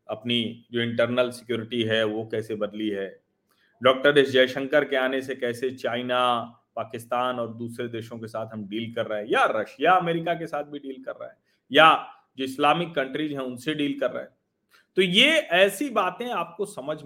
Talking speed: 190 wpm